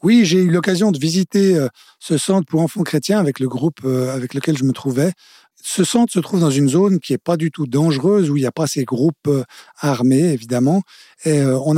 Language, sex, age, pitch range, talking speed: French, male, 50-69, 135-185 Hz, 220 wpm